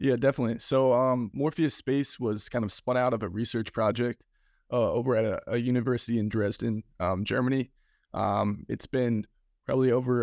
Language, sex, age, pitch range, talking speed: English, male, 20-39, 105-125 Hz, 175 wpm